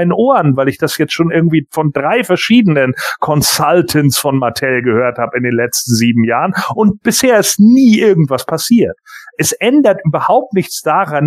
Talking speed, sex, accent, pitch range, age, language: 165 wpm, male, German, 145-185 Hz, 40-59, German